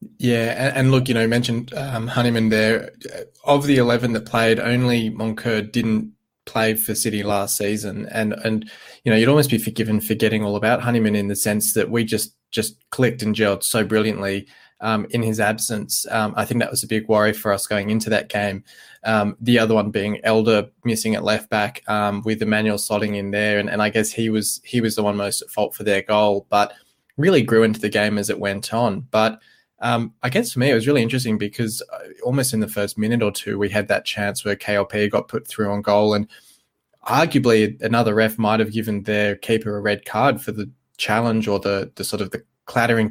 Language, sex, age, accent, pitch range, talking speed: English, male, 20-39, Australian, 105-115 Hz, 220 wpm